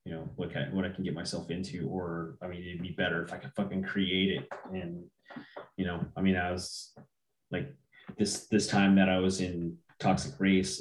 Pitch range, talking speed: 85-95 Hz, 210 wpm